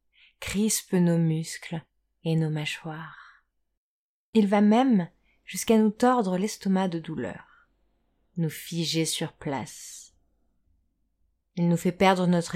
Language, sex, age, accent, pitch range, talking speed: French, female, 30-49, French, 150-195 Hz, 115 wpm